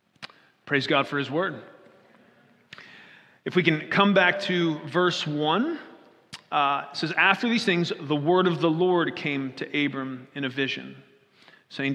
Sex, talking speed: male, 155 wpm